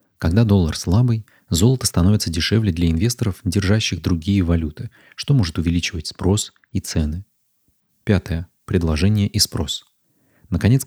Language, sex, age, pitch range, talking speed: Russian, male, 30-49, 85-105 Hz, 120 wpm